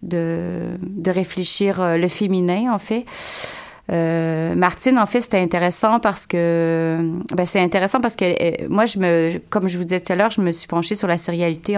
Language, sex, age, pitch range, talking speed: French, female, 30-49, 170-205 Hz, 205 wpm